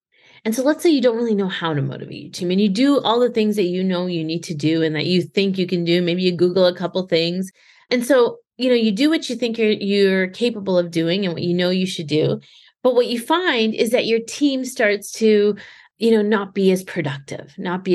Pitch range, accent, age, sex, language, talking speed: 175-215 Hz, American, 30-49, female, English, 270 wpm